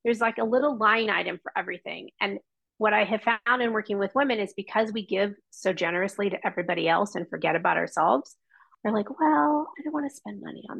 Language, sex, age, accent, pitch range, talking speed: English, female, 30-49, American, 200-255 Hz, 220 wpm